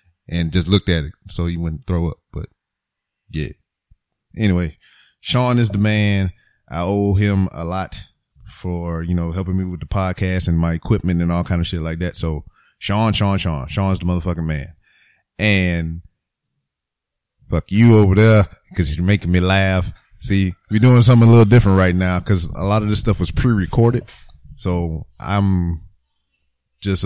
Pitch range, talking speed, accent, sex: 85-105 Hz, 175 wpm, American, male